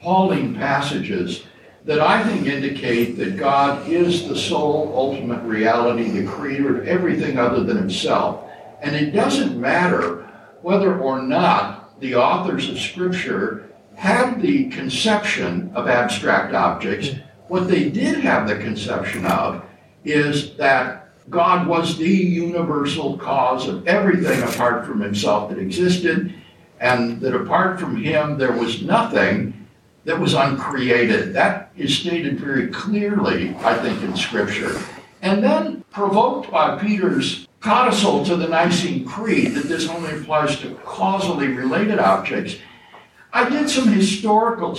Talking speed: 135 wpm